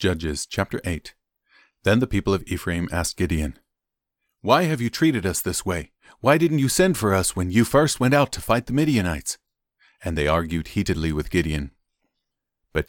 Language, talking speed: English, 180 wpm